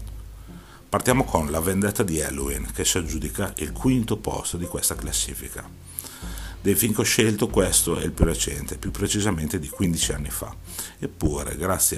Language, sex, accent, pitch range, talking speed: Italian, male, native, 75-95 Hz, 165 wpm